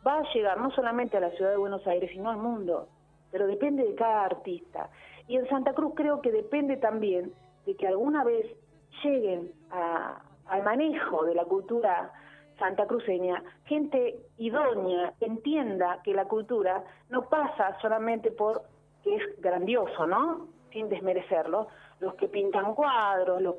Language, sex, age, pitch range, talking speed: Spanish, female, 40-59, 185-245 Hz, 155 wpm